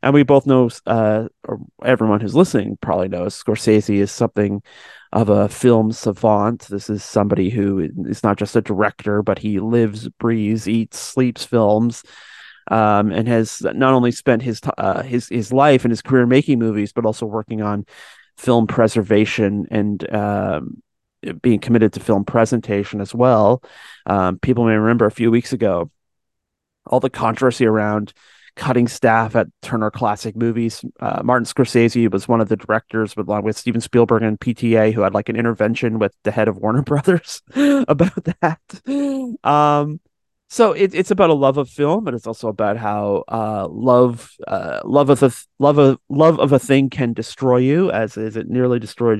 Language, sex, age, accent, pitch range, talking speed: English, male, 30-49, American, 105-130 Hz, 175 wpm